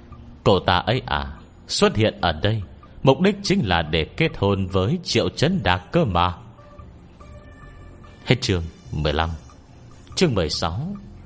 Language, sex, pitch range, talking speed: Vietnamese, male, 85-135 Hz, 150 wpm